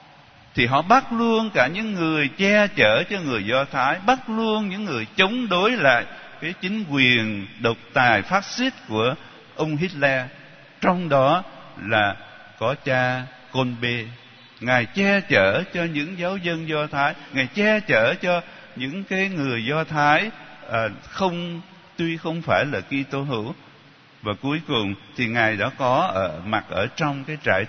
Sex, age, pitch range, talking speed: male, 60-79, 130-185 Hz, 165 wpm